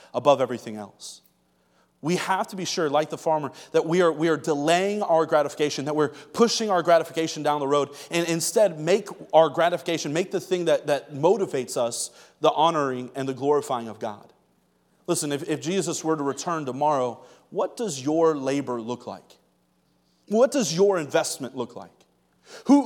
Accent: American